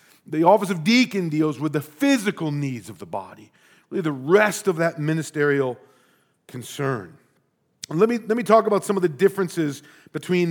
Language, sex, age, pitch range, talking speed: English, male, 40-59, 150-205 Hz, 165 wpm